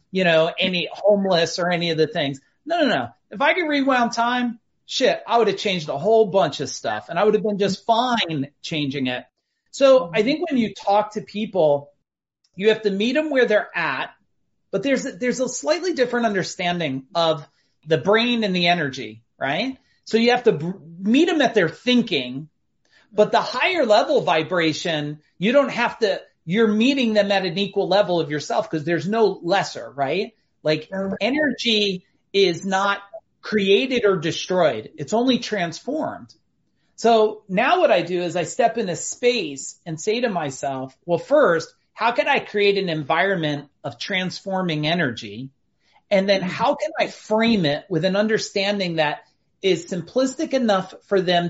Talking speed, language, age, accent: 175 wpm, English, 40-59, American